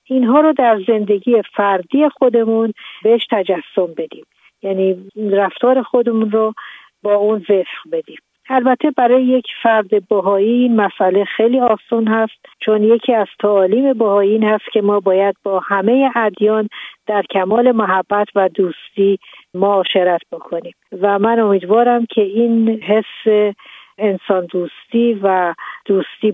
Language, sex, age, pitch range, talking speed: Persian, female, 50-69, 190-225 Hz, 130 wpm